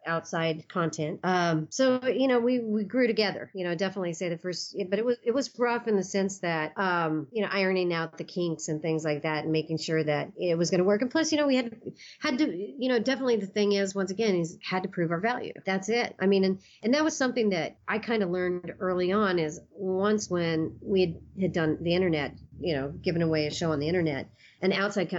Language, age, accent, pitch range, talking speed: English, 40-59, American, 160-195 Hz, 250 wpm